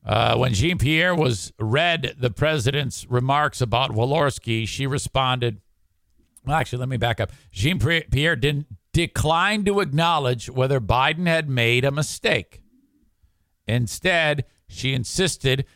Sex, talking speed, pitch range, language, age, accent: male, 130 wpm, 115-185 Hz, English, 50-69, American